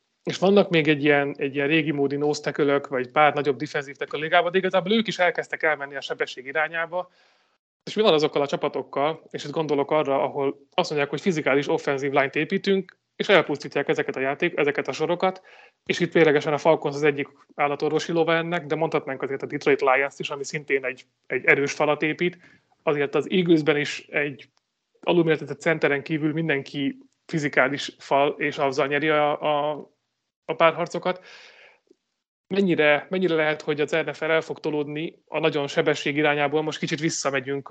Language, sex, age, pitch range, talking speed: Hungarian, male, 30-49, 145-165 Hz, 175 wpm